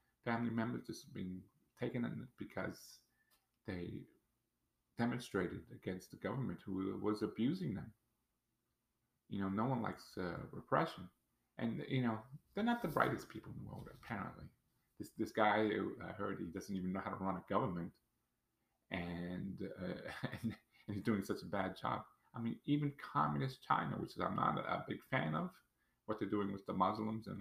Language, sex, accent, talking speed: English, male, American, 175 wpm